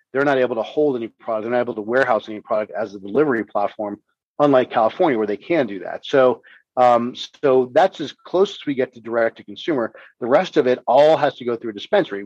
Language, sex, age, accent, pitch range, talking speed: English, male, 40-59, American, 110-130 Hz, 240 wpm